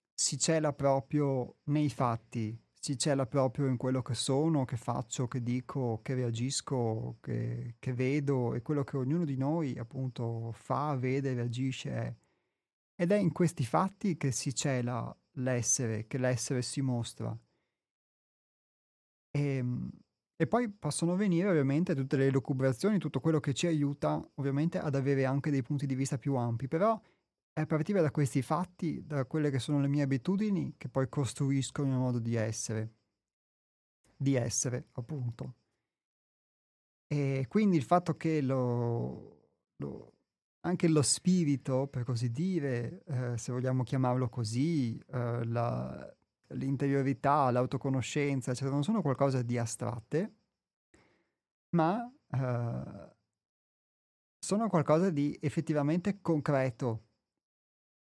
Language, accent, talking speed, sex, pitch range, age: Italian, native, 130 wpm, male, 125-150 Hz, 30-49